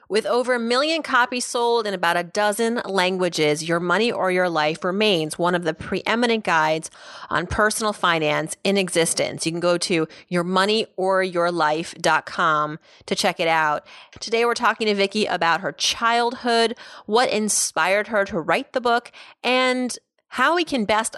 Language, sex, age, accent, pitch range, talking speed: English, female, 30-49, American, 165-215 Hz, 160 wpm